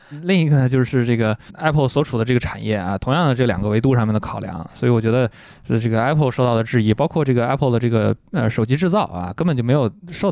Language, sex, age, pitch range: Chinese, male, 20-39, 115-150 Hz